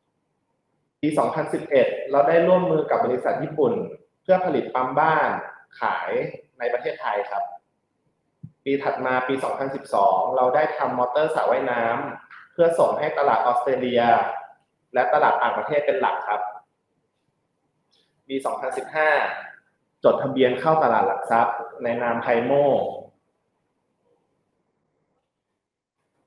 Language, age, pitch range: Thai, 20-39, 125-185 Hz